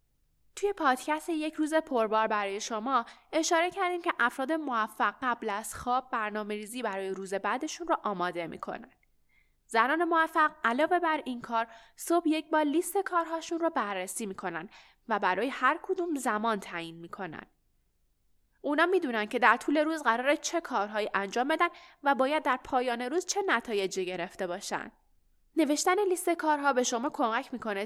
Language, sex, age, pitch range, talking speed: Persian, female, 10-29, 215-310 Hz, 155 wpm